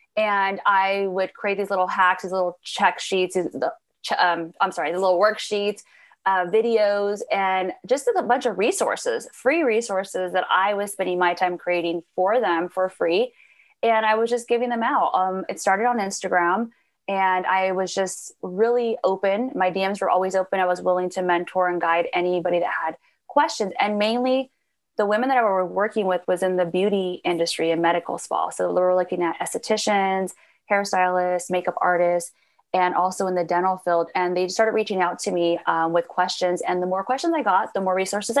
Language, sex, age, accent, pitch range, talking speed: English, female, 20-39, American, 180-220 Hz, 195 wpm